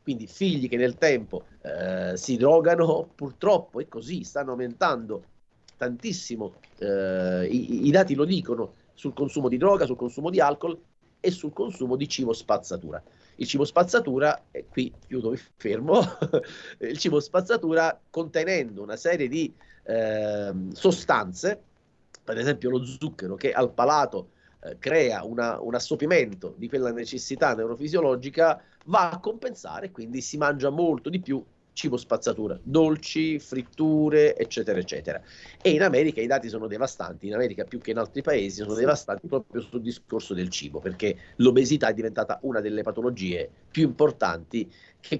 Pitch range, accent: 115-160 Hz, native